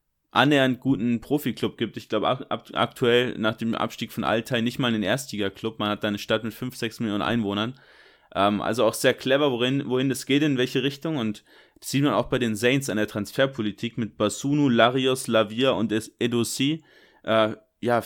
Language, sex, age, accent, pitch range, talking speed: German, male, 20-39, German, 115-135 Hz, 190 wpm